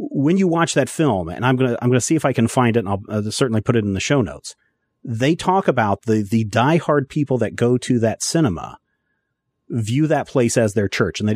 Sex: male